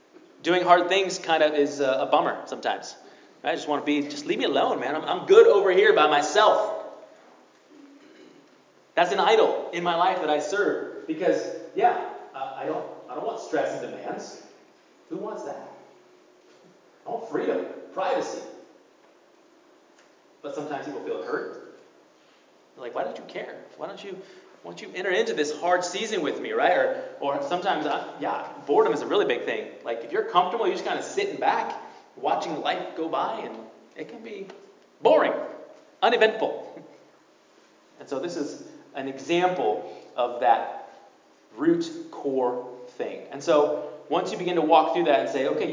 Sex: male